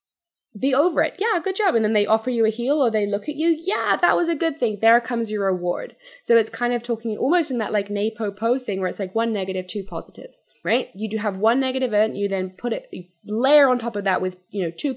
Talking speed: 265 wpm